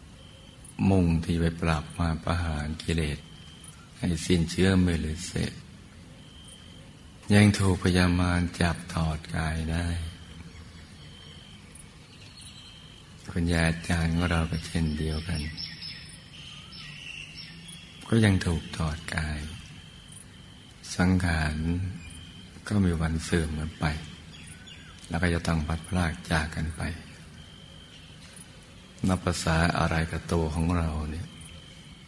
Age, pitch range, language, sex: 60-79, 80-90 Hz, Thai, male